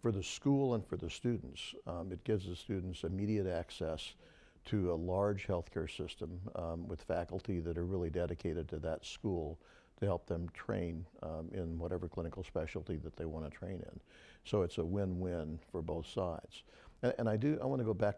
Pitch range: 80-100 Hz